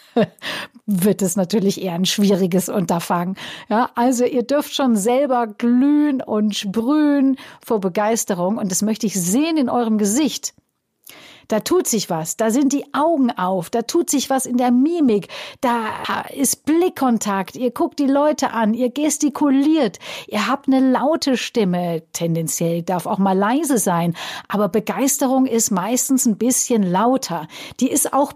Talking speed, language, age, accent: 155 wpm, German, 50-69, German